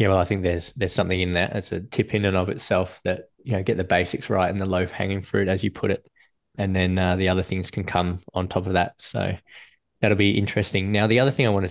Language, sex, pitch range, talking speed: English, male, 90-100 Hz, 275 wpm